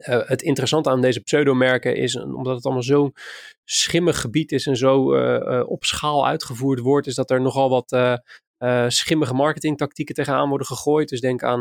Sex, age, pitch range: male, 20-39, 125-140 Hz